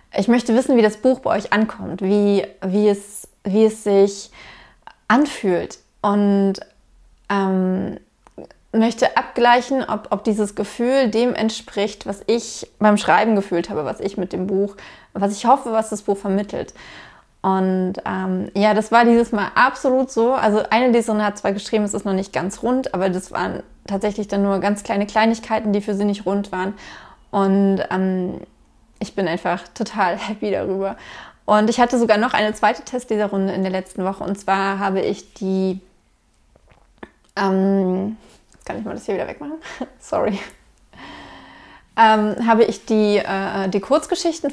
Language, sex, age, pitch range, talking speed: German, female, 20-39, 195-230 Hz, 160 wpm